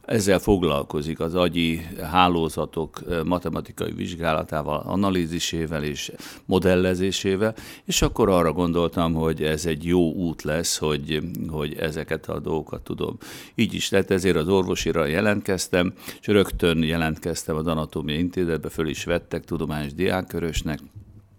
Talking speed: 125 wpm